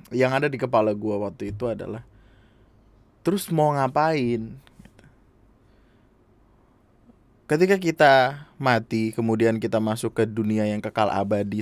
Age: 20-39